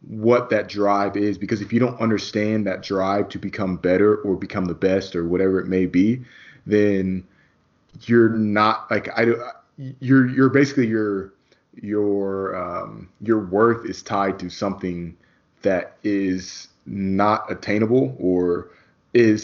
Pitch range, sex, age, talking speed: 95-110 Hz, male, 20-39, 140 wpm